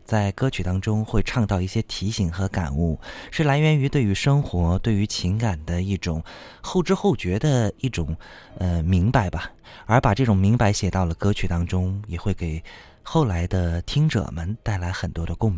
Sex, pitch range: male, 90-115 Hz